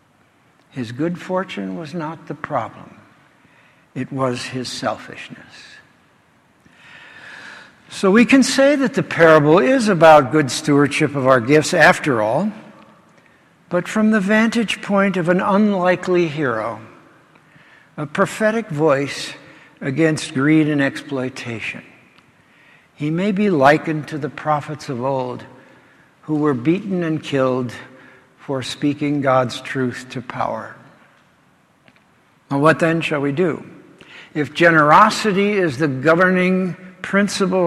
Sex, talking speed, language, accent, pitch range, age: male, 120 wpm, English, American, 140-190 Hz, 60-79